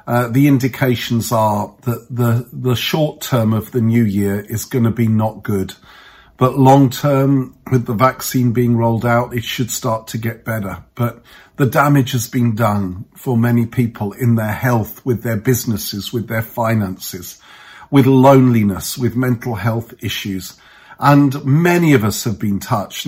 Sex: male